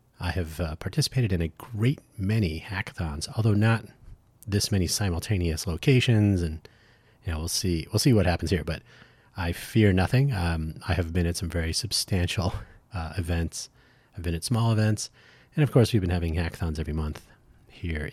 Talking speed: 180 wpm